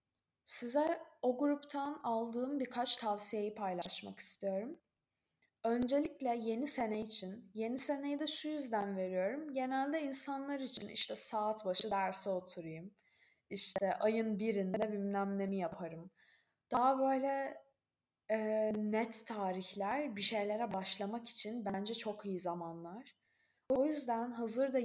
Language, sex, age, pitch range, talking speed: Turkish, female, 10-29, 200-255 Hz, 115 wpm